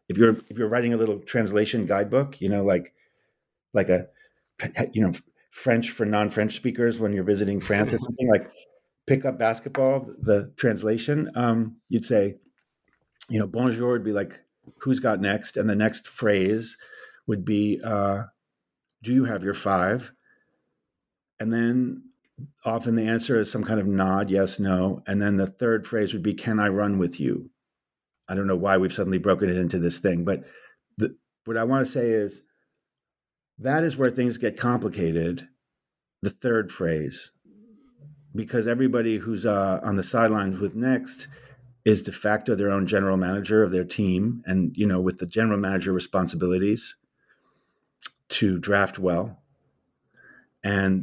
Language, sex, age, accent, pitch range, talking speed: English, male, 50-69, American, 95-120 Hz, 165 wpm